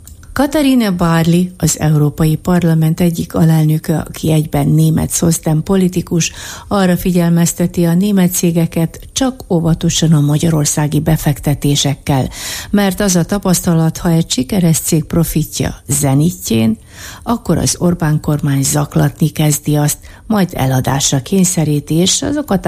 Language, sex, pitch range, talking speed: Hungarian, female, 145-180 Hz, 115 wpm